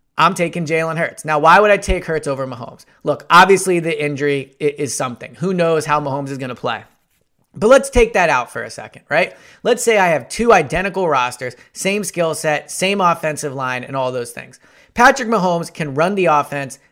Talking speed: 205 wpm